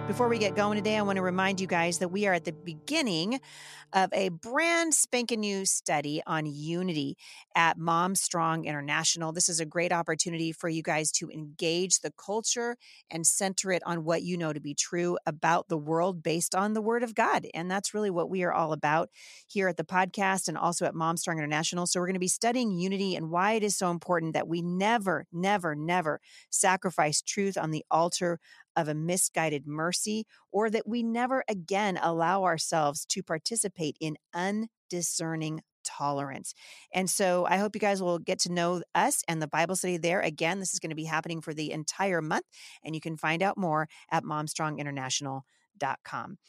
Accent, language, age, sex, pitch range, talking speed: American, English, 40-59, female, 165-195 Hz, 195 wpm